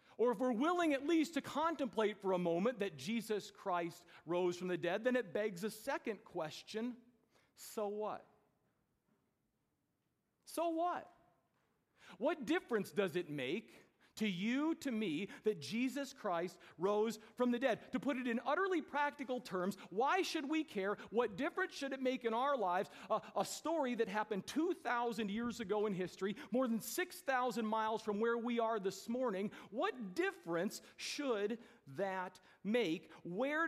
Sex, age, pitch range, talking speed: male, 40-59, 200-245 Hz, 160 wpm